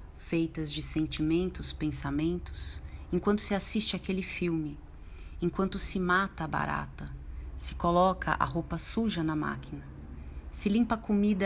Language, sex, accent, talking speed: Portuguese, female, Brazilian, 130 wpm